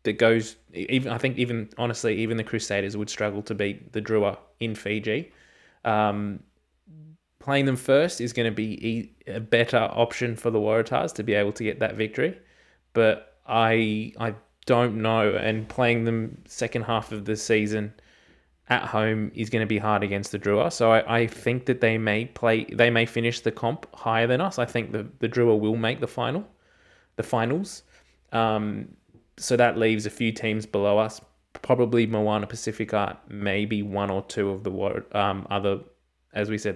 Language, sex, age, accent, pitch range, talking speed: English, male, 20-39, Australian, 105-115 Hz, 185 wpm